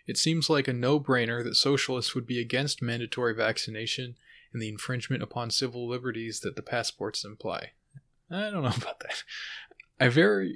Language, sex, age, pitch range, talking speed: English, male, 20-39, 115-130 Hz, 165 wpm